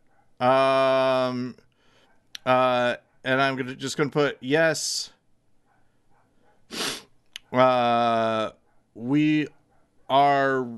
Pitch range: 130-160 Hz